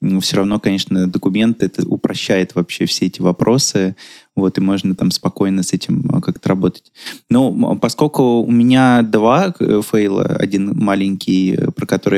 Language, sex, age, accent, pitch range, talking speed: Russian, male, 20-39, native, 100-115 Hz, 145 wpm